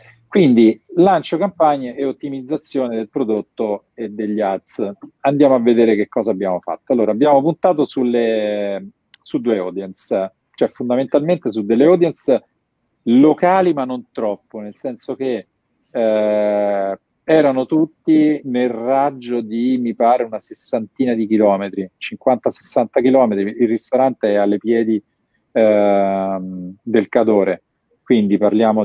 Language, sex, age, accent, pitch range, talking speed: Italian, male, 40-59, native, 100-130 Hz, 125 wpm